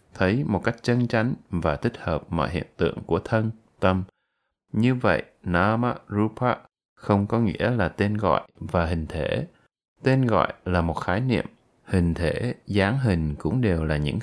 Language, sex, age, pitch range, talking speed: Vietnamese, male, 20-39, 85-115 Hz, 175 wpm